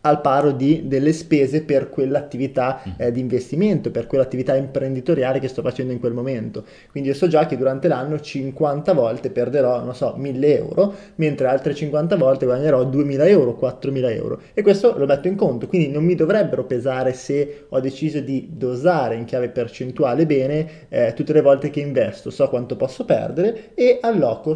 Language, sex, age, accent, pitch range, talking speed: Italian, male, 20-39, native, 130-165 Hz, 180 wpm